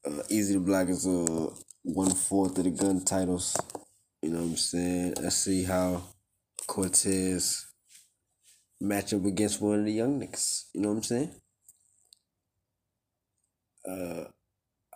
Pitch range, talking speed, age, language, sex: 90-105 Hz, 140 wpm, 20-39, English, male